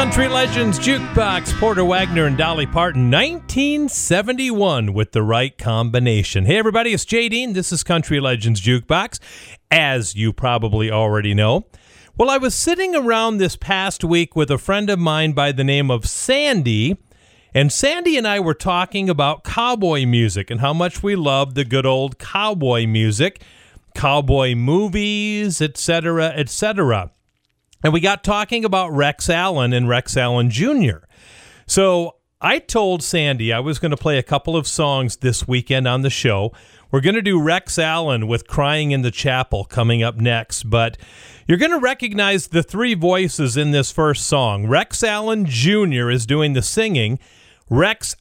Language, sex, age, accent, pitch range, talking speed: English, male, 40-59, American, 120-185 Hz, 165 wpm